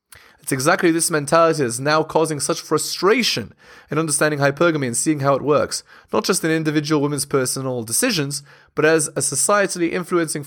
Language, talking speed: English, 165 wpm